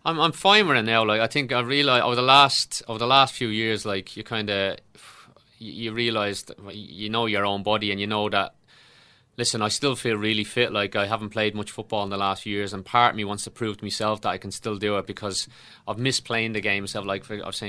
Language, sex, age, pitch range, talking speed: English, male, 30-49, 100-110 Hz, 260 wpm